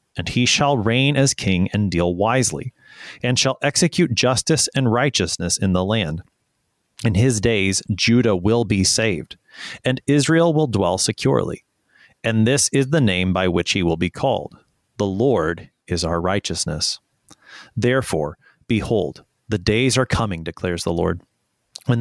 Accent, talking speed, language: American, 155 wpm, English